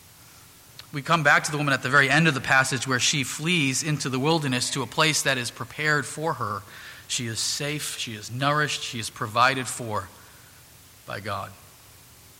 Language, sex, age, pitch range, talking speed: English, male, 40-59, 130-175 Hz, 190 wpm